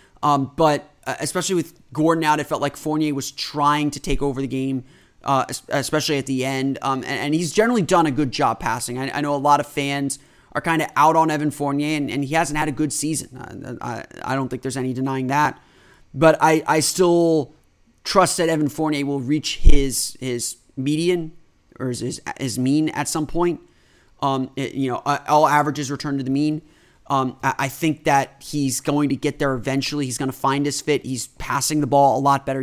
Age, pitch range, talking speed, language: 30-49, 135-150 Hz, 215 wpm, English